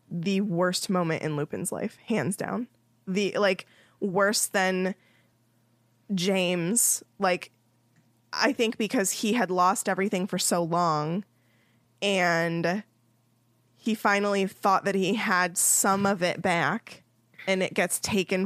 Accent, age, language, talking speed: American, 20-39, English, 125 wpm